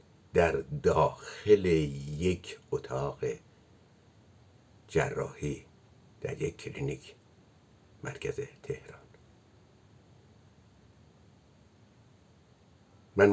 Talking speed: 50 wpm